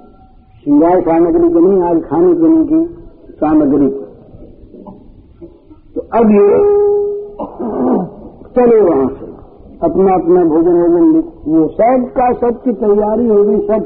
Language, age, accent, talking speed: Hindi, 60-79, native, 110 wpm